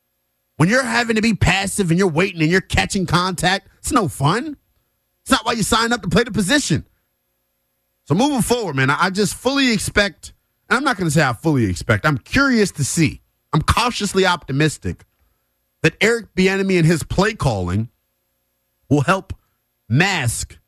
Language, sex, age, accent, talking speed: English, male, 30-49, American, 175 wpm